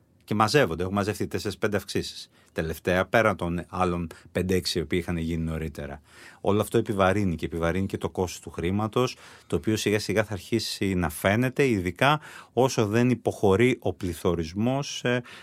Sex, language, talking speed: male, Greek, 155 wpm